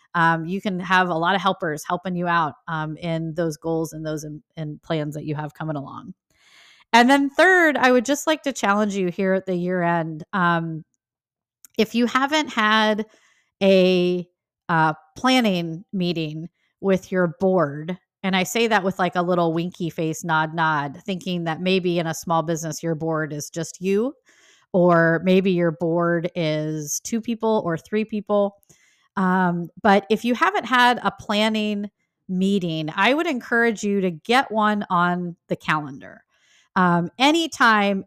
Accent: American